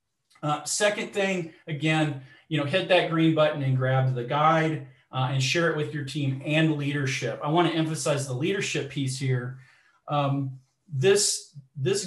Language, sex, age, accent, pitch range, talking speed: English, male, 40-59, American, 130-155 Hz, 170 wpm